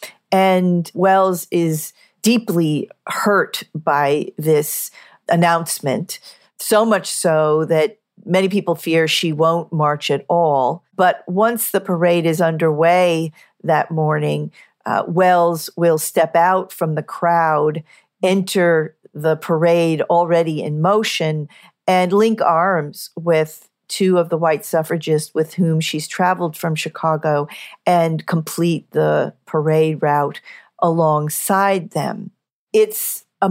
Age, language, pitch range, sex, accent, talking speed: 50-69, English, 160-190 Hz, female, American, 120 wpm